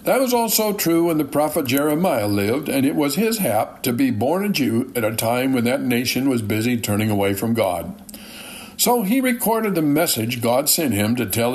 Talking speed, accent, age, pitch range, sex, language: 215 wpm, American, 60-79, 115-160 Hz, male, English